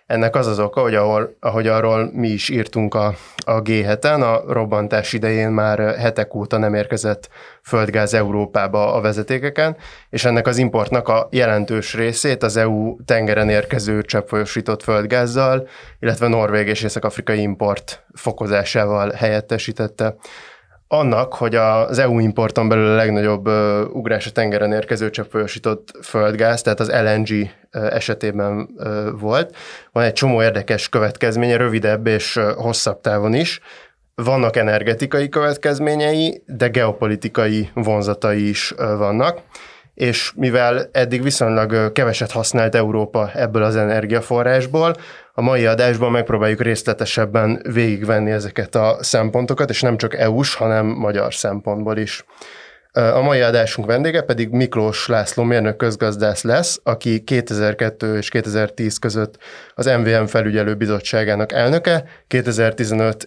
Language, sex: Hungarian, male